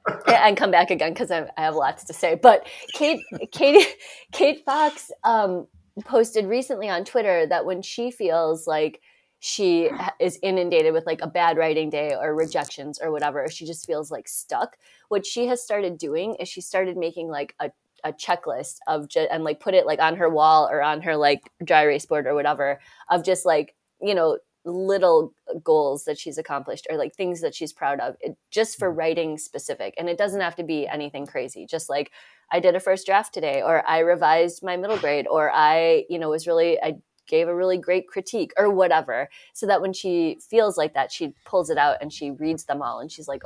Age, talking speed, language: 20-39, 210 wpm, English